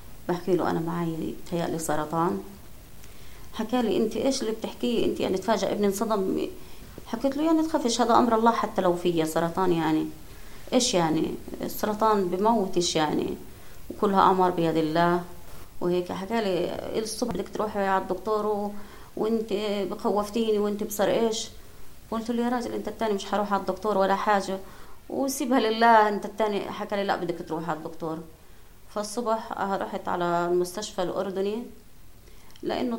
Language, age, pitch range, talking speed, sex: Arabic, 20-39, 175-210 Hz, 155 wpm, female